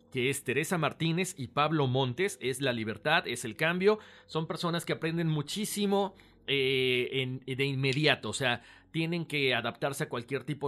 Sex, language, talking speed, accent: male, Spanish, 165 wpm, Mexican